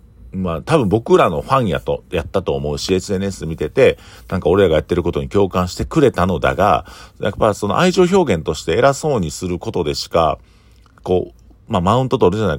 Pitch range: 75-110 Hz